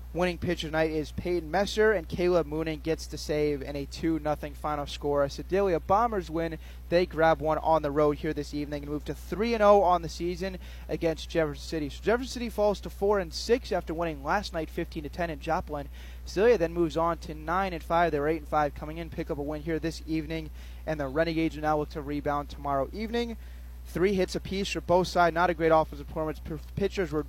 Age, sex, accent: 20-39, male, American